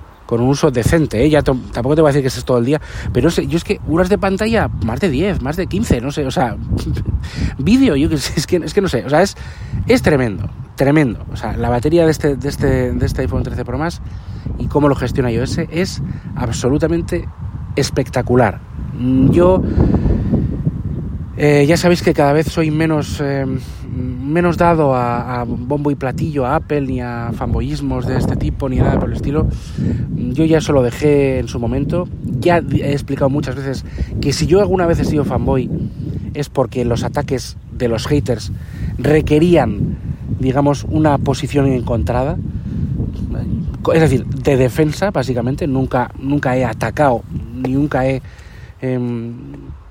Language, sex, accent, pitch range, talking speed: Spanish, male, Spanish, 120-150 Hz, 180 wpm